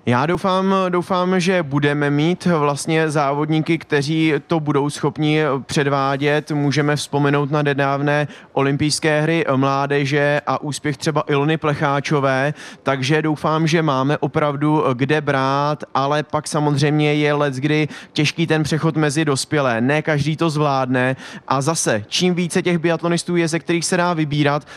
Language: Czech